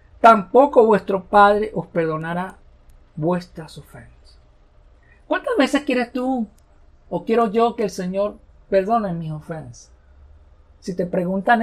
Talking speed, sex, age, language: 120 wpm, male, 50-69, Spanish